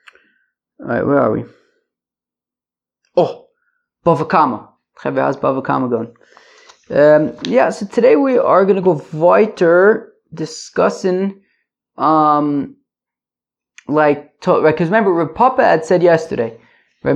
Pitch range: 150-225 Hz